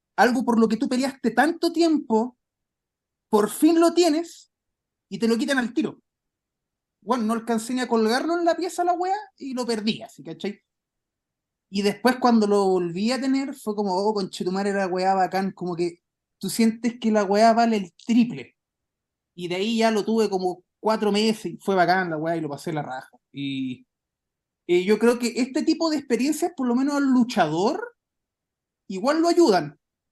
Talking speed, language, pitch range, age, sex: 195 wpm, Spanish, 205-280 Hz, 30-49, male